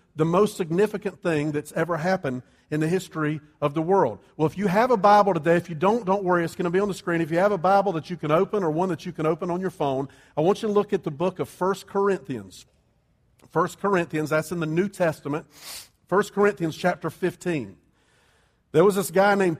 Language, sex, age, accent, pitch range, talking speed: English, male, 50-69, American, 150-185 Hz, 235 wpm